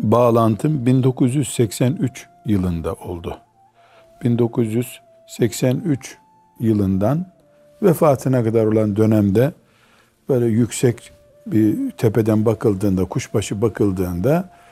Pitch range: 105-145 Hz